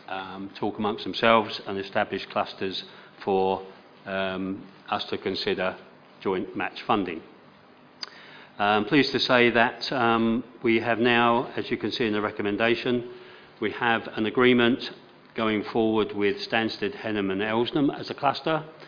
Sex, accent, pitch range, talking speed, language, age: male, British, 100-115 Hz, 145 wpm, English, 40-59